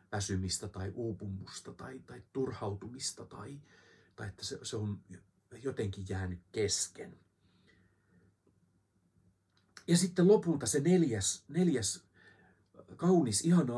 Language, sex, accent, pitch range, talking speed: Finnish, male, native, 95-130 Hz, 100 wpm